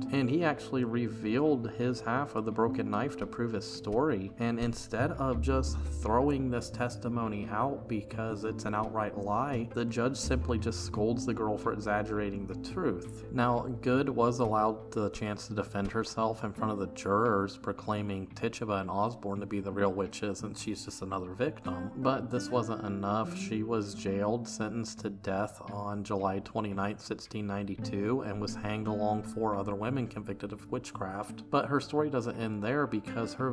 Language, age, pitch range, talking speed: English, 30-49, 105-120 Hz, 175 wpm